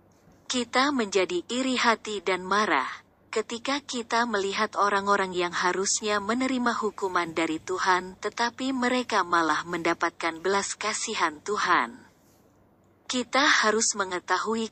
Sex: female